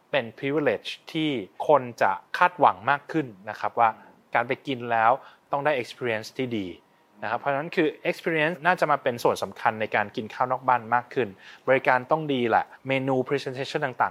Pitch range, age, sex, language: 120-150 Hz, 20-39, male, English